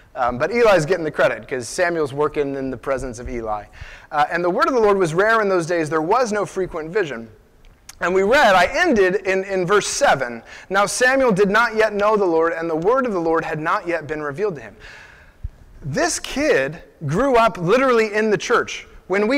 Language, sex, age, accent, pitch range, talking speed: English, male, 30-49, American, 185-240 Hz, 215 wpm